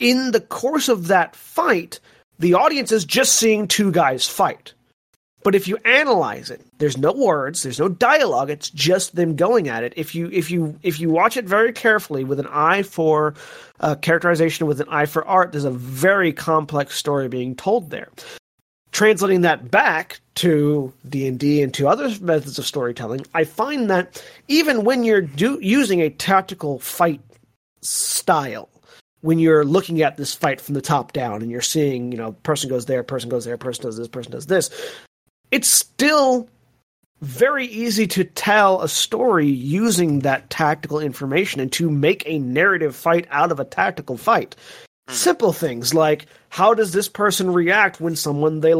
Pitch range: 145-200 Hz